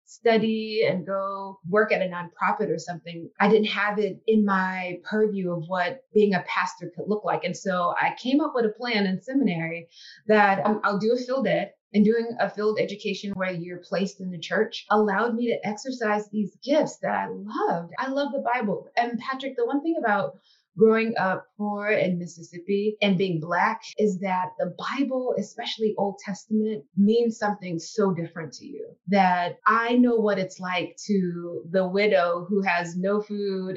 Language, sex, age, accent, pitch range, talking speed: English, female, 20-39, American, 185-235 Hz, 185 wpm